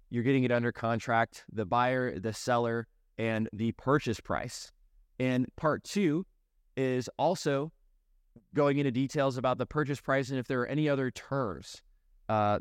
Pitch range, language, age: 105-130 Hz, English, 20-39